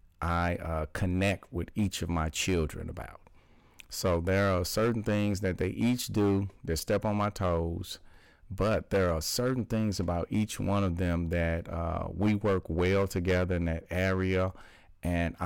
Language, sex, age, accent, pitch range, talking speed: English, male, 40-59, American, 85-100 Hz, 165 wpm